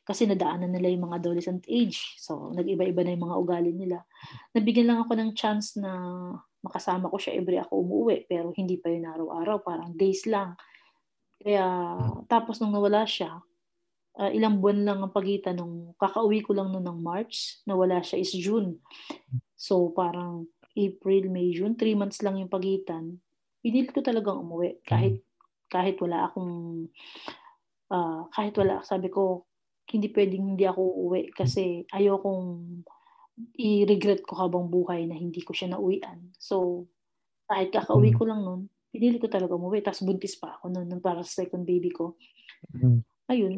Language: Filipino